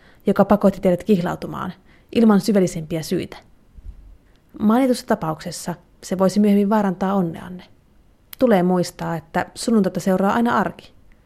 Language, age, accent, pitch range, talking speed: Finnish, 30-49, native, 175-210 Hz, 110 wpm